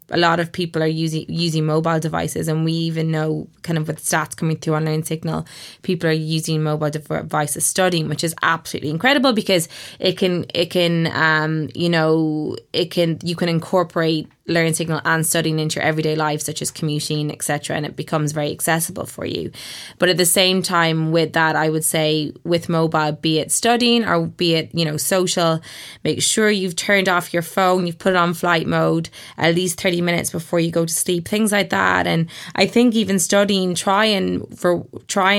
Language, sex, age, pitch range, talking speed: English, female, 20-39, 160-185 Hz, 200 wpm